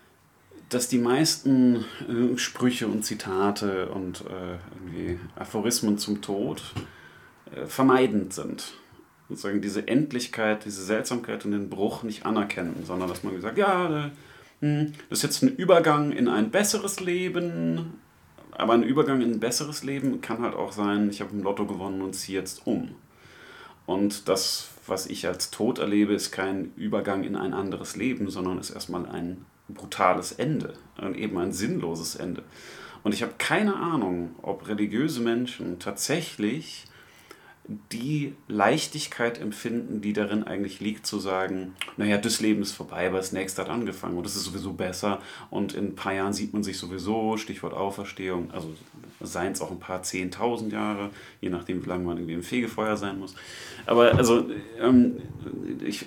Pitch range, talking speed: 95-120 Hz, 160 wpm